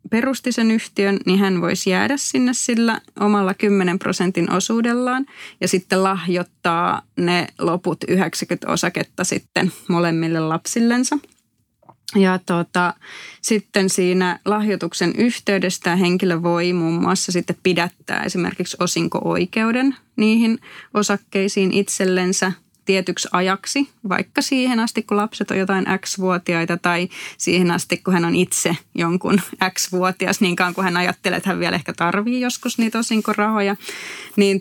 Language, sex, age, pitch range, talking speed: Finnish, female, 20-39, 180-210 Hz, 125 wpm